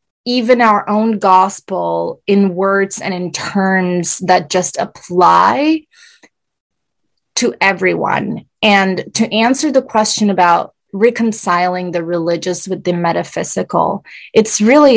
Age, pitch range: 20-39, 175-210 Hz